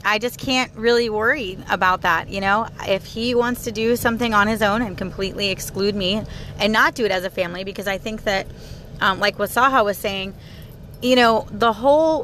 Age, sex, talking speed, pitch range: 30-49, female, 205 wpm, 200-260 Hz